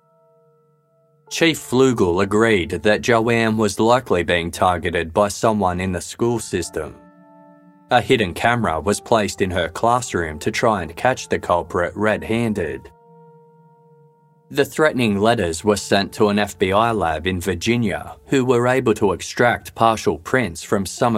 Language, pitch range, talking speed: English, 95-135 Hz, 140 wpm